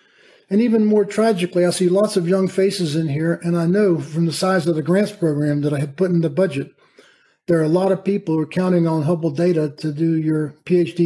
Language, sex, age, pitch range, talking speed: English, male, 50-69, 160-190 Hz, 245 wpm